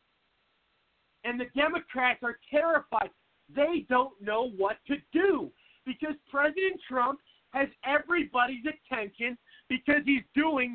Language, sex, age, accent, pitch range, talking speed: English, male, 40-59, American, 245-305 Hz, 110 wpm